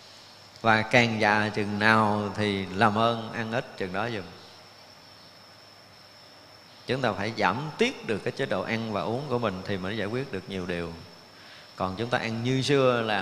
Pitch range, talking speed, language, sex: 110-155 Hz, 185 wpm, Vietnamese, male